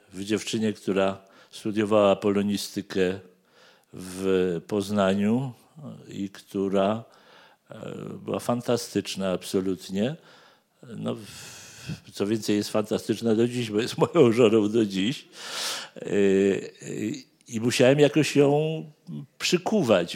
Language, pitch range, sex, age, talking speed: Polish, 100-120 Hz, male, 50-69, 85 wpm